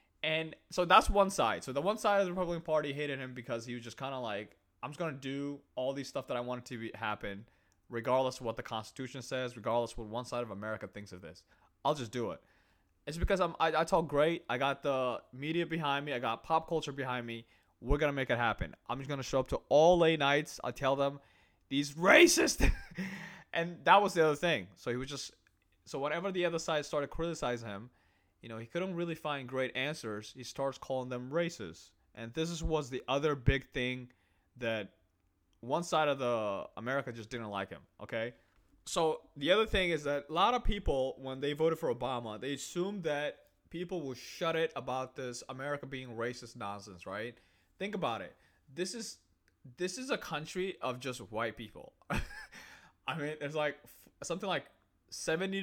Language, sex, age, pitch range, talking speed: English, male, 20-39, 115-160 Hz, 210 wpm